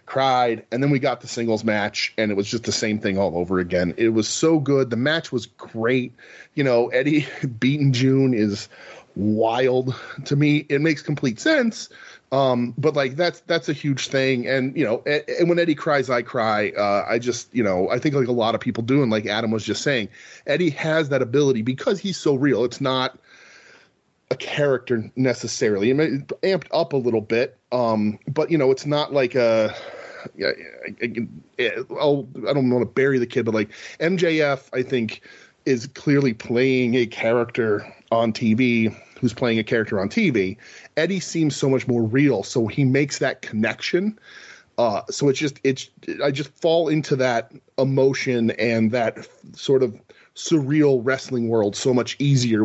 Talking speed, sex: 190 wpm, male